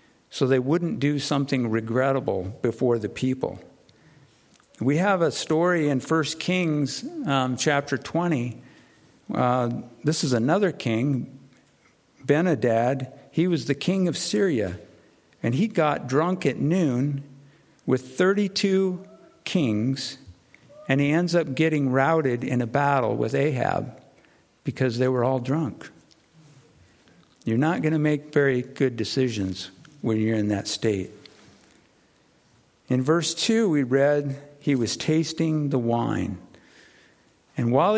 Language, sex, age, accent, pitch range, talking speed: English, male, 50-69, American, 125-155 Hz, 130 wpm